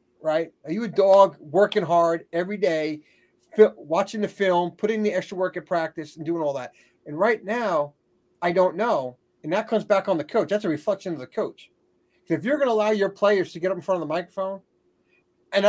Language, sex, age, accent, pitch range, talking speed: English, male, 40-59, American, 165-215 Hz, 220 wpm